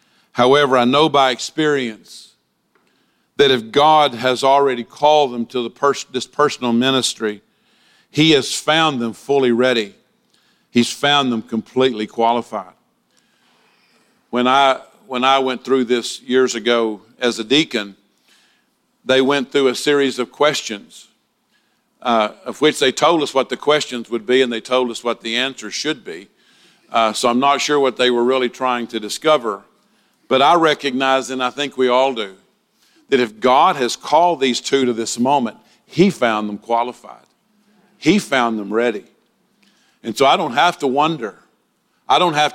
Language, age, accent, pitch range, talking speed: English, 50-69, American, 120-145 Hz, 160 wpm